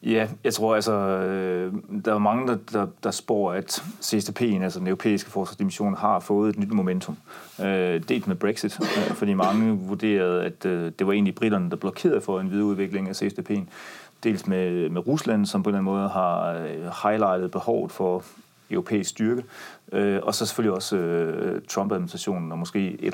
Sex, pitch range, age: male, 95-115 Hz, 30-49